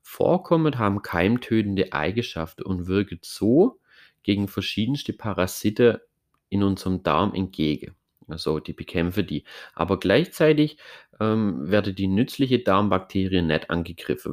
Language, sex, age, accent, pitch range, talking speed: German, male, 30-49, German, 90-105 Hz, 115 wpm